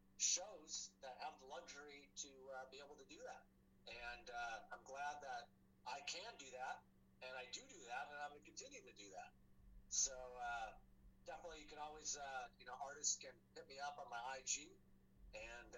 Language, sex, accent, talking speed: English, male, American, 200 wpm